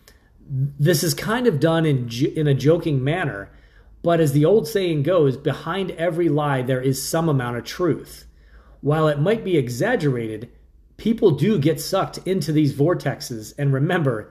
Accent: American